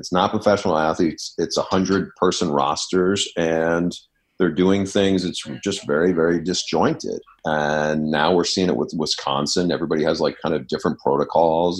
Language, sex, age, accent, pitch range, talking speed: English, male, 40-59, American, 75-90 Hz, 165 wpm